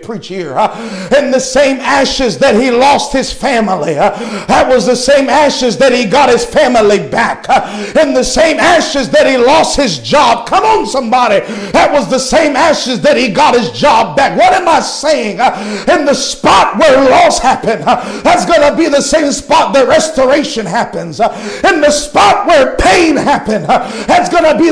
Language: English